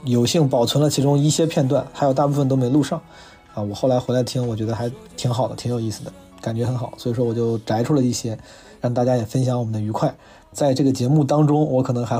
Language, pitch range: Chinese, 115-140 Hz